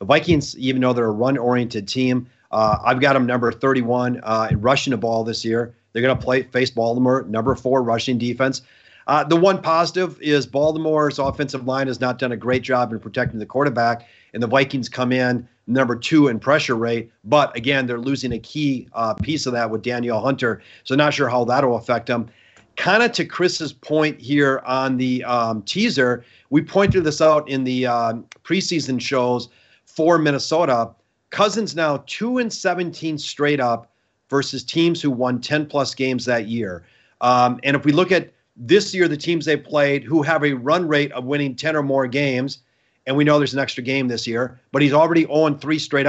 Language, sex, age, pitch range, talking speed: English, male, 40-59, 125-150 Hz, 200 wpm